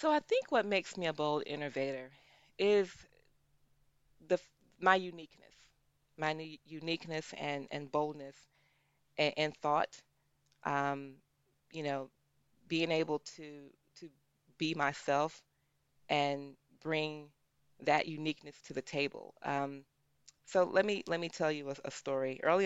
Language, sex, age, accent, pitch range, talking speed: English, female, 30-49, American, 140-160 Hz, 130 wpm